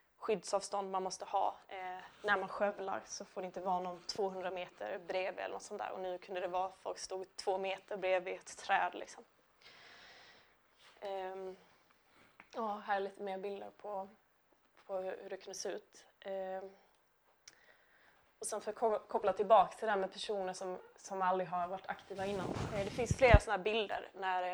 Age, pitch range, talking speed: 20-39, 190-215 Hz, 180 wpm